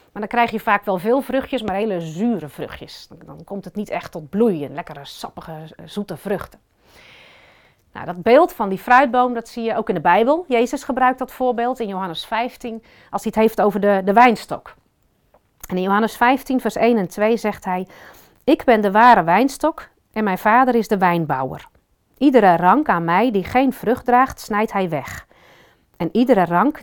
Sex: female